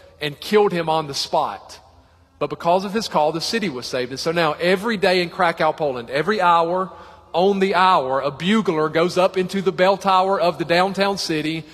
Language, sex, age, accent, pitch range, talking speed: English, male, 40-59, American, 145-190 Hz, 205 wpm